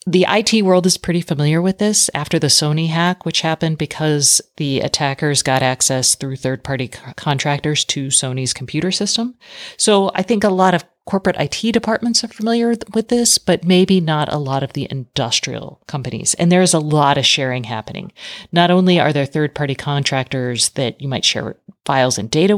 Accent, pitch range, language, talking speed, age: American, 135-180 Hz, English, 185 wpm, 40-59